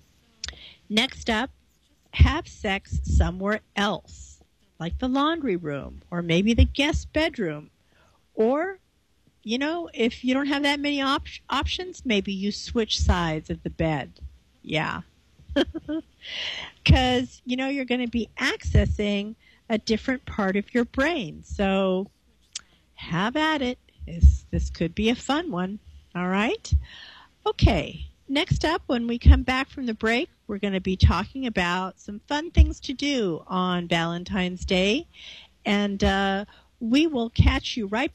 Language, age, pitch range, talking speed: English, 50-69, 180-255 Hz, 145 wpm